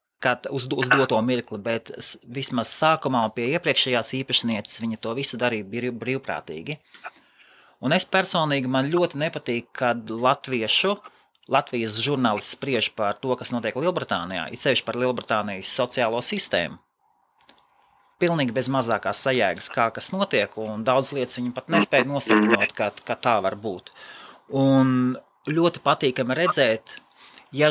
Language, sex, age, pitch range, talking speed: English, male, 30-49, 110-140 Hz, 130 wpm